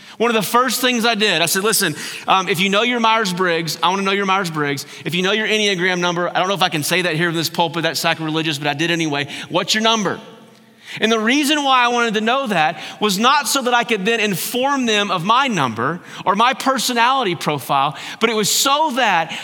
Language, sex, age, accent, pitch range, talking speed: English, male, 30-49, American, 180-245 Hz, 240 wpm